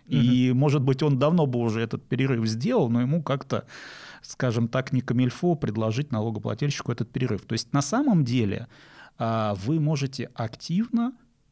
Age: 30-49